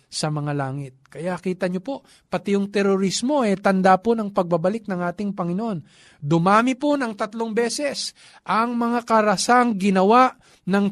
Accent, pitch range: native, 180-230 Hz